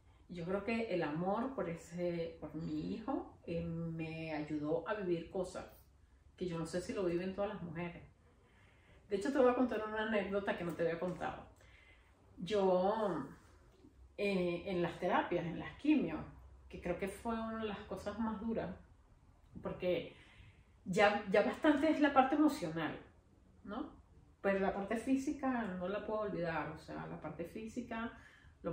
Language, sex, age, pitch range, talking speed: Spanish, female, 30-49, 160-210 Hz, 165 wpm